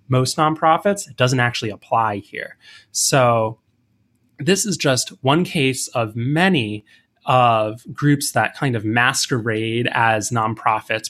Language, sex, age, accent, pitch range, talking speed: English, male, 20-39, American, 110-135 Hz, 125 wpm